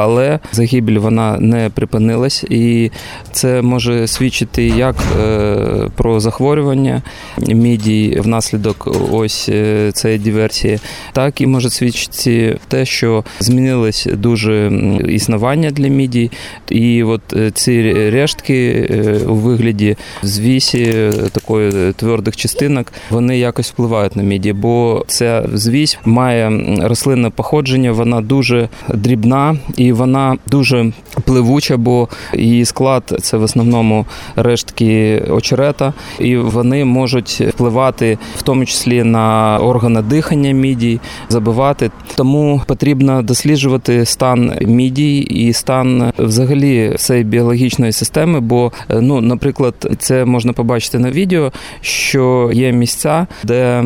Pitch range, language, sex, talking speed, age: 110-130 Hz, Ukrainian, male, 110 wpm, 20-39